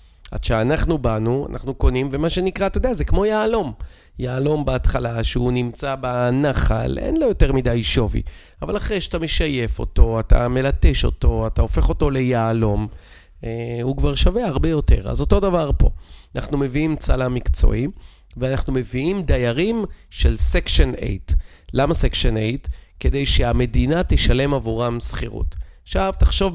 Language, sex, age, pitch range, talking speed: Hebrew, male, 40-59, 95-145 Hz, 145 wpm